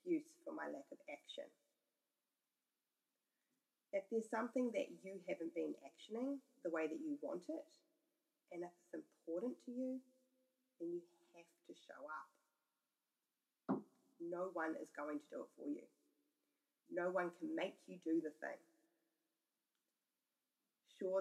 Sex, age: female, 30-49